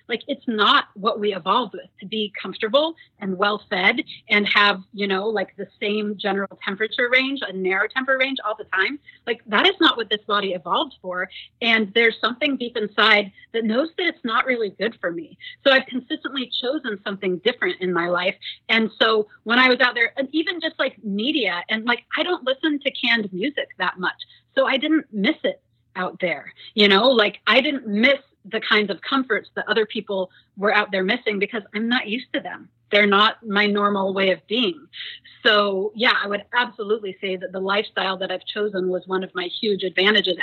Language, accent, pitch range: English, American, 195-245 Hz